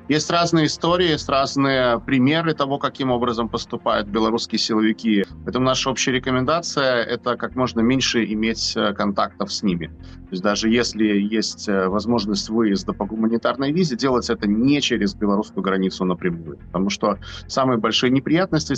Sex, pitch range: male, 100-125 Hz